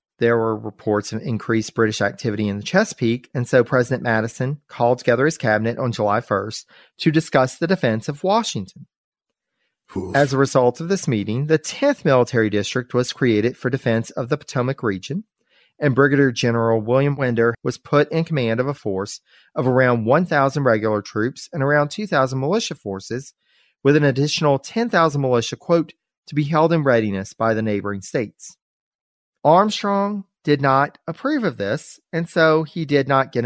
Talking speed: 170 wpm